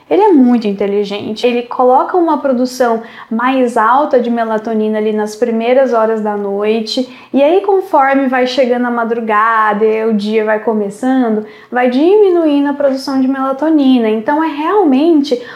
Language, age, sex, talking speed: Portuguese, 10-29, female, 150 wpm